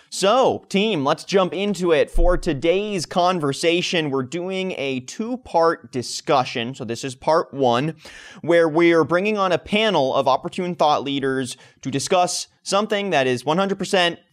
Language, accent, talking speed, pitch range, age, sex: English, American, 155 wpm, 130-170 Hz, 20-39, male